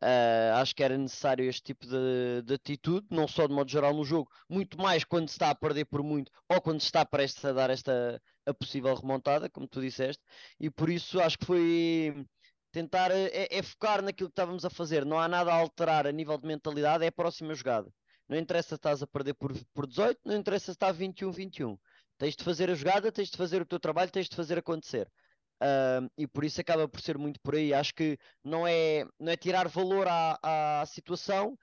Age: 20-39